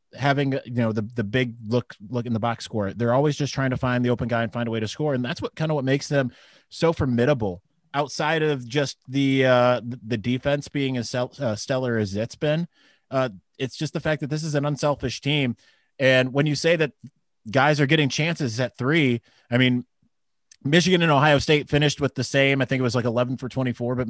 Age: 20-39